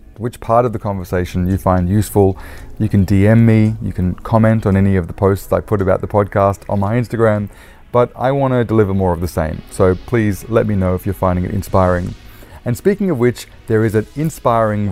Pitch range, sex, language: 95-115 Hz, male, English